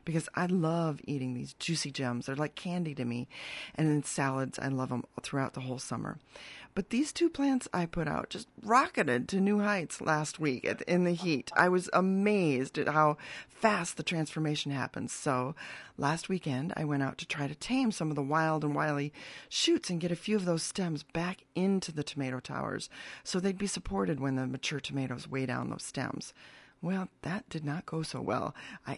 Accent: American